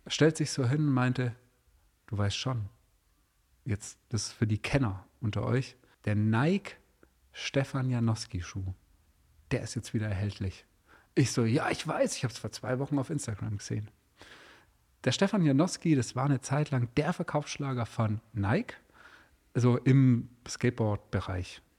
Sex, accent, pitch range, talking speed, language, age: male, German, 110-145 Hz, 145 wpm, German, 40-59